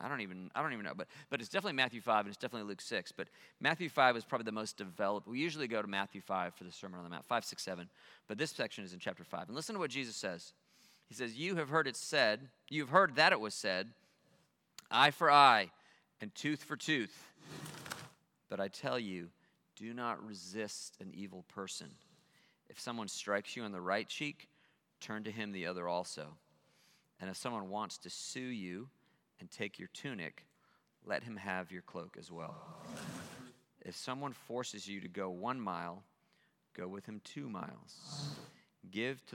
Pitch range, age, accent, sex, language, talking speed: 95-130 Hz, 40-59, American, male, English, 200 wpm